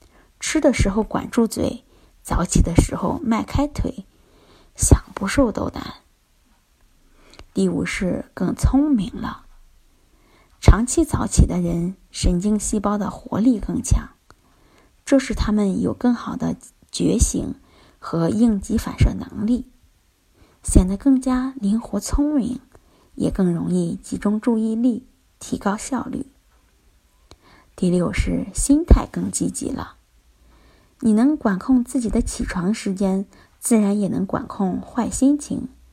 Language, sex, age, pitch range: Chinese, female, 20-39, 185-255 Hz